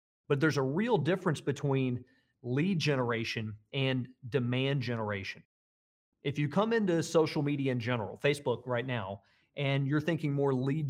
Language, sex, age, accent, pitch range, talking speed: English, male, 40-59, American, 125-160 Hz, 150 wpm